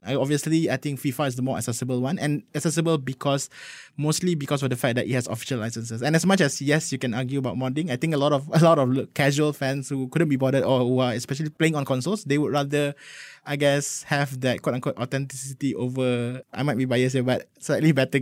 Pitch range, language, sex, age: 130-155 Hz, English, male, 20-39